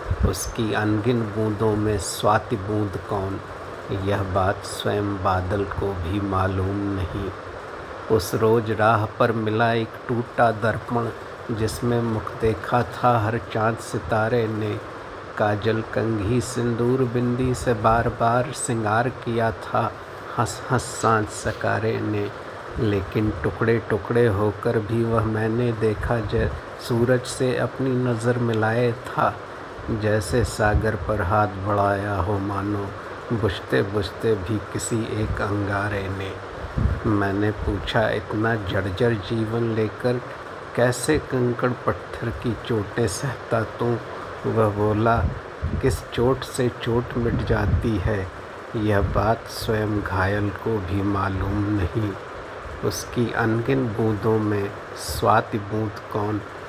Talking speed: 120 wpm